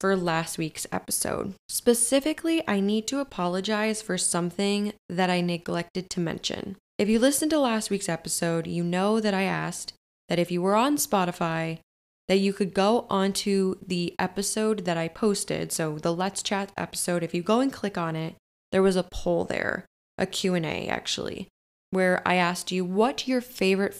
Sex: female